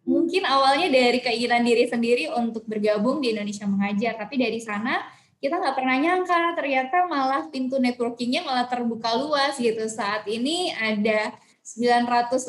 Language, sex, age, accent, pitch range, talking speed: Indonesian, female, 20-39, native, 220-265 Hz, 145 wpm